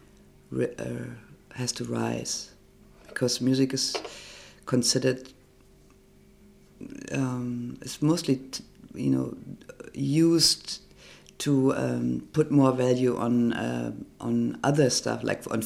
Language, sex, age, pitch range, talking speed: English, female, 50-69, 125-145 Hz, 95 wpm